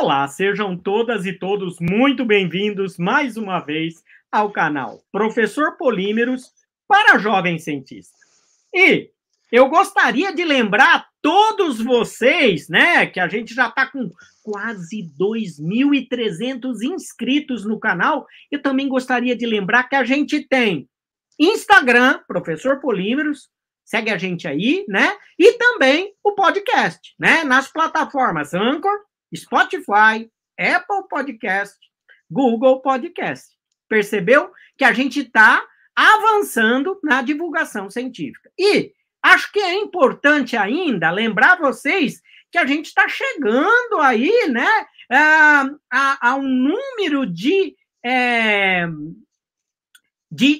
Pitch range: 220-335 Hz